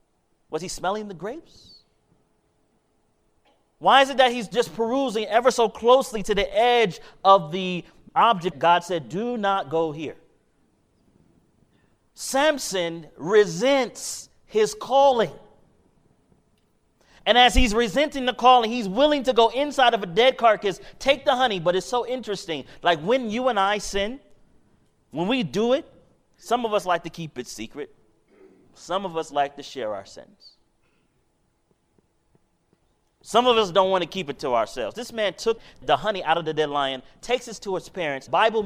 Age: 30-49